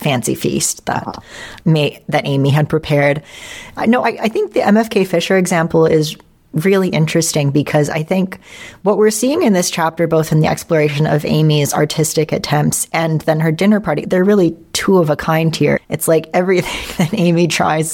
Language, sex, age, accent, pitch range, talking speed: English, female, 40-59, American, 155-190 Hz, 185 wpm